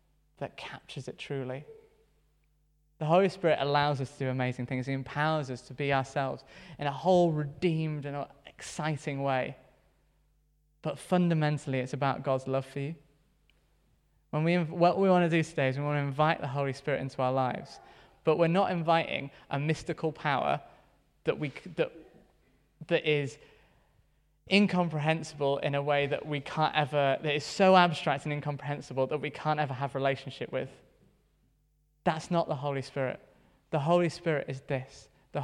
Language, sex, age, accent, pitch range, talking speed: English, male, 20-39, British, 135-160 Hz, 165 wpm